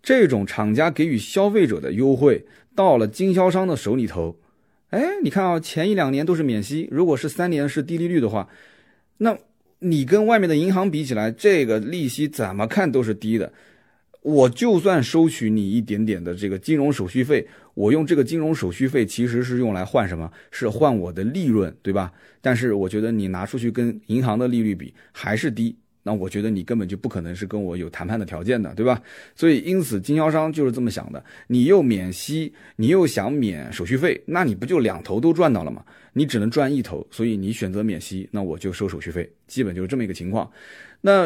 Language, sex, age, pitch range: Chinese, male, 30-49, 100-145 Hz